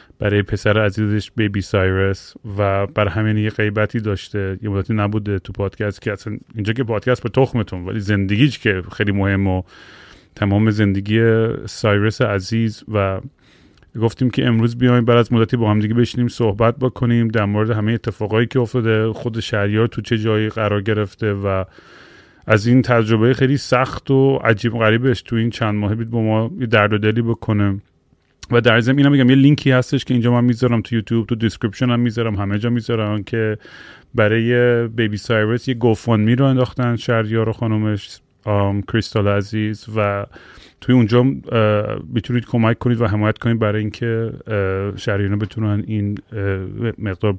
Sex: male